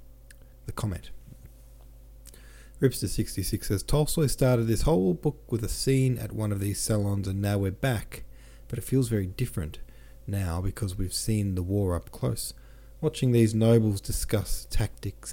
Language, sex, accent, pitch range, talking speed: English, male, Australian, 90-120 Hz, 155 wpm